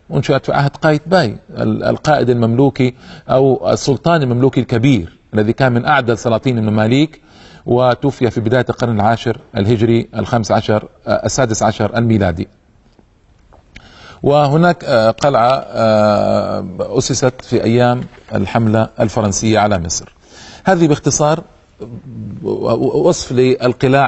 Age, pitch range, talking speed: 40-59, 115-150 Hz, 100 wpm